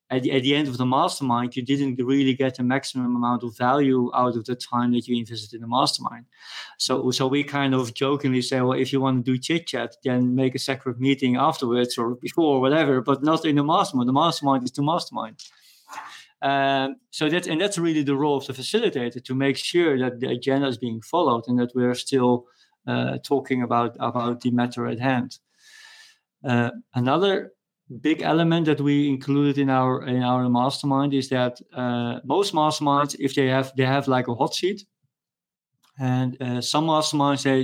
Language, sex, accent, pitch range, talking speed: English, male, Dutch, 125-150 Hz, 200 wpm